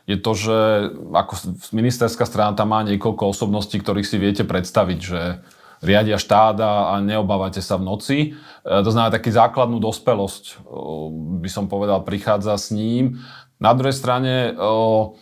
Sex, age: male, 30-49